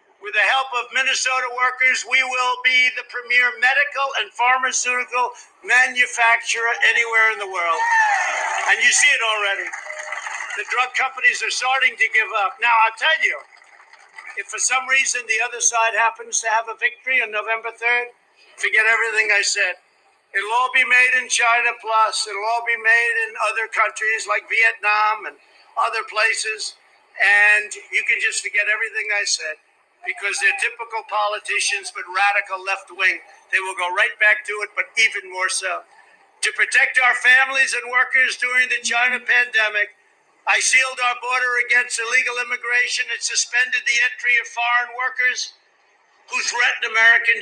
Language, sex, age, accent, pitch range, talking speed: Spanish, male, 60-79, American, 220-265 Hz, 160 wpm